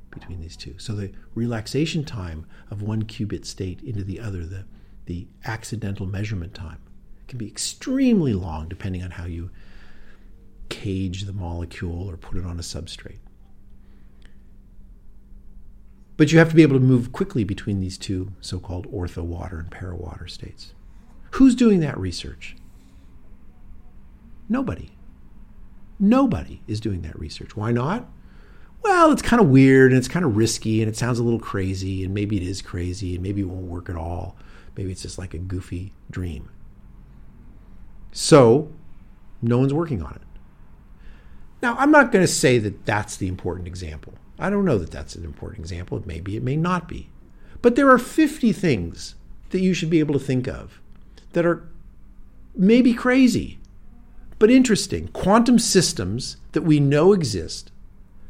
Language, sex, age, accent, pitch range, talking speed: Danish, male, 50-69, American, 90-130 Hz, 160 wpm